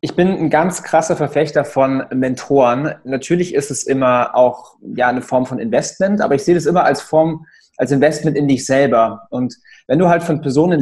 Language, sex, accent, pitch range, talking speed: German, male, German, 135-175 Hz, 200 wpm